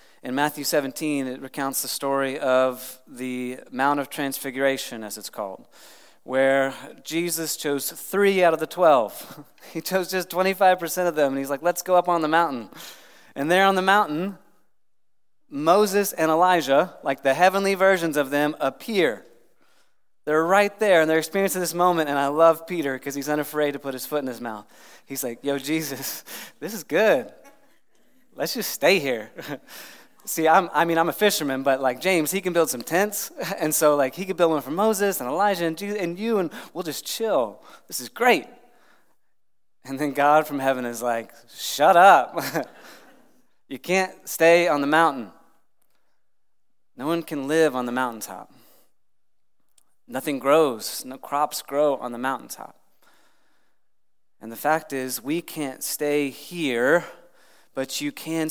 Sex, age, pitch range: male, 30-49, 135-175 Hz